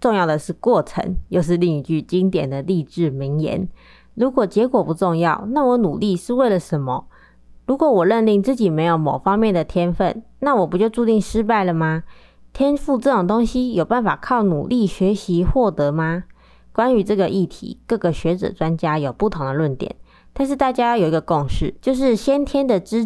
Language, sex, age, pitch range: Chinese, female, 20-39, 155-215 Hz